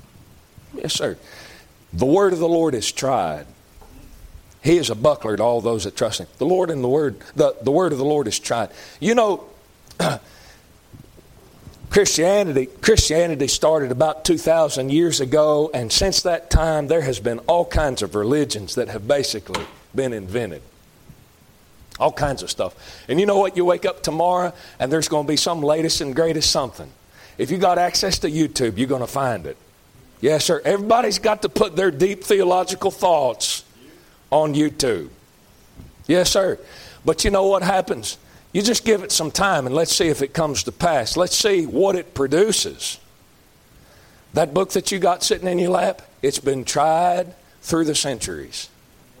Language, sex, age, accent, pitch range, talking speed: English, male, 40-59, American, 140-185 Hz, 175 wpm